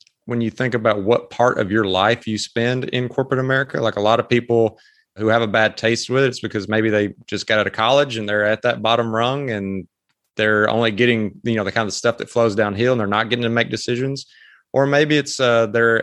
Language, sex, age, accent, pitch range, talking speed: English, male, 30-49, American, 105-120 Hz, 245 wpm